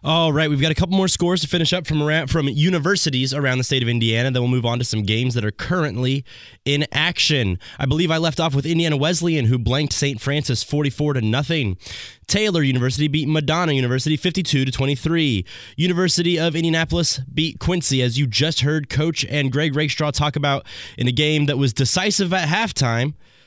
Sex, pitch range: male, 125-165 Hz